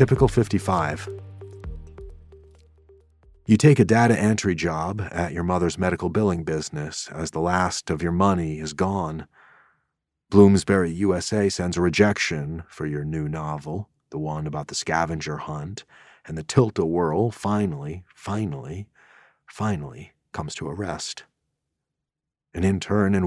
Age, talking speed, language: 40-59, 130 wpm, English